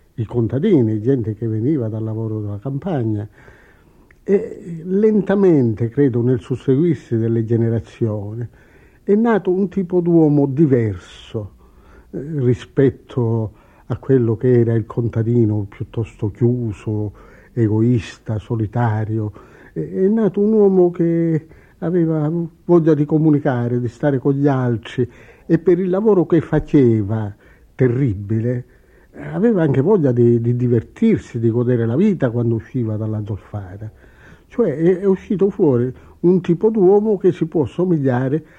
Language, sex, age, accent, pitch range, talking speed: Italian, male, 60-79, native, 115-165 Hz, 125 wpm